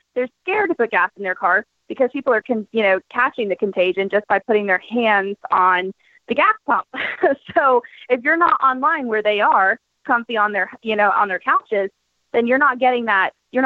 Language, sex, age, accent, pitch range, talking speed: English, female, 20-39, American, 200-255 Hz, 205 wpm